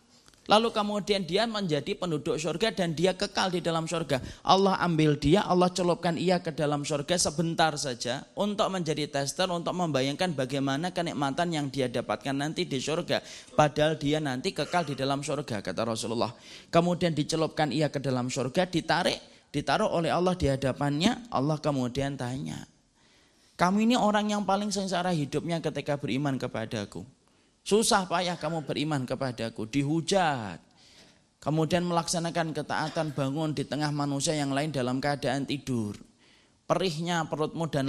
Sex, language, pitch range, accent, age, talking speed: male, Indonesian, 140-185 Hz, native, 20-39, 145 wpm